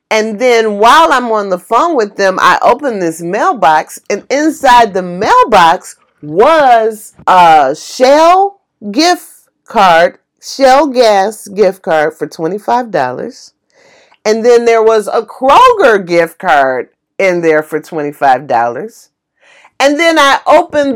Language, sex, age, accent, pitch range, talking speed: English, female, 40-59, American, 195-300 Hz, 125 wpm